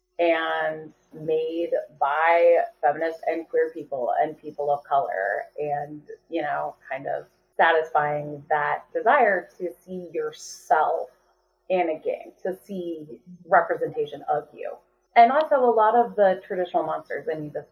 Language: English